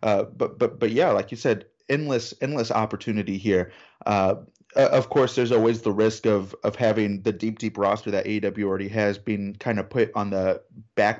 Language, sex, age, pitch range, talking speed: English, male, 30-49, 100-115 Hz, 200 wpm